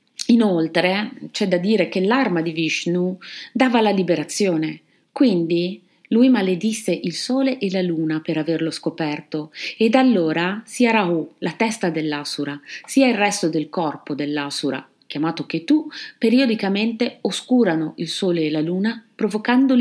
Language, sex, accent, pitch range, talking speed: Italian, female, native, 170-240 Hz, 140 wpm